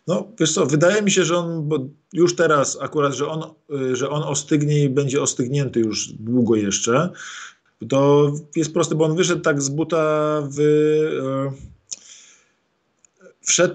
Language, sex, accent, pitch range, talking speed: Polish, male, native, 140-165 Hz, 150 wpm